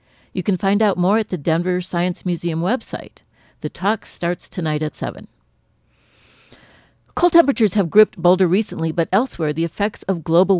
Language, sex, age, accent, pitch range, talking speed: English, female, 60-79, American, 155-195 Hz, 165 wpm